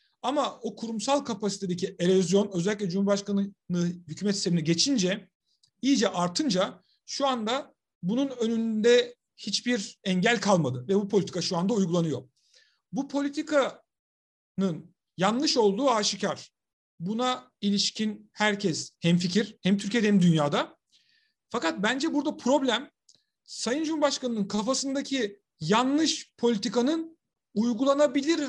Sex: male